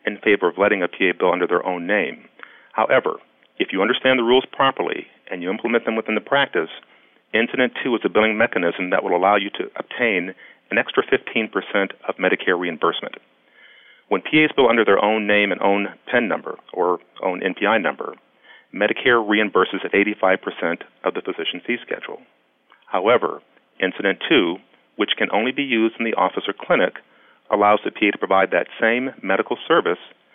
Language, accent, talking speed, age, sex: English, American, 175 wpm, 40-59, male